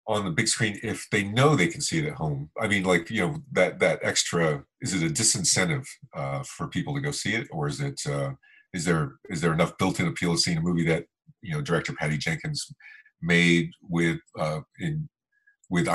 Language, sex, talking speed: English, male, 215 wpm